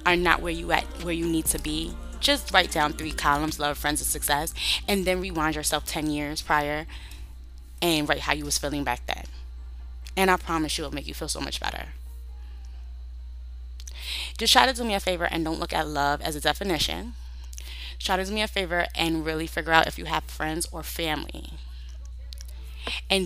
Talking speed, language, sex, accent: 200 wpm, English, female, American